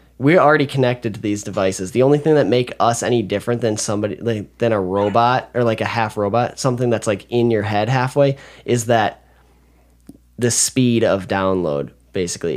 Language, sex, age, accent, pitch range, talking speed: English, male, 10-29, American, 95-125 Hz, 185 wpm